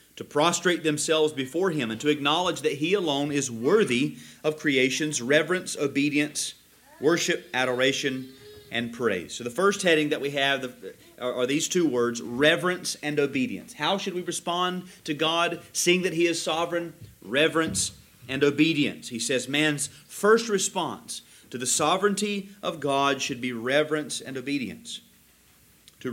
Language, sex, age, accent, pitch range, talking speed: English, male, 40-59, American, 130-170 Hz, 150 wpm